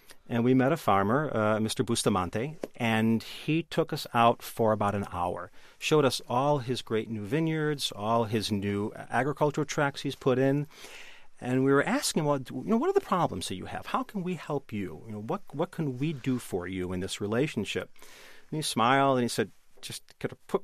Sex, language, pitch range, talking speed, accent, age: male, English, 110-145 Hz, 215 wpm, American, 40-59